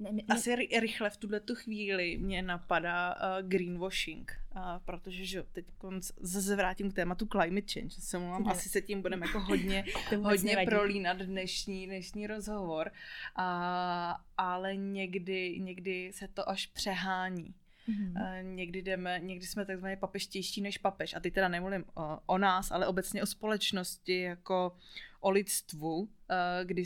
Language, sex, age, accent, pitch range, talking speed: Czech, female, 20-39, native, 180-195 Hz, 125 wpm